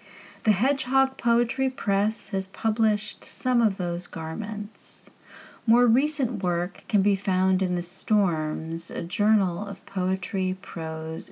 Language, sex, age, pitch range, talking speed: English, female, 40-59, 180-230 Hz, 125 wpm